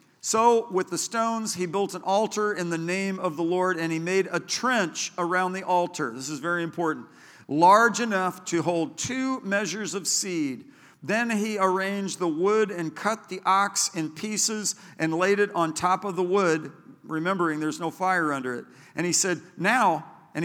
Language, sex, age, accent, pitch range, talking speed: English, male, 50-69, American, 165-210 Hz, 190 wpm